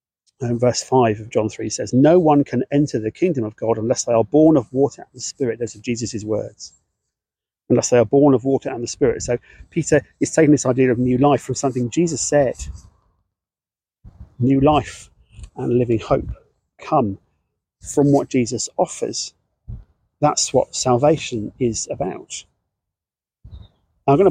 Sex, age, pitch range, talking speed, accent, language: male, 40-59, 115-150 Hz, 165 wpm, British, English